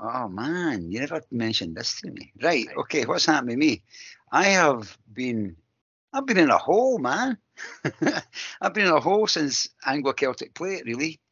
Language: English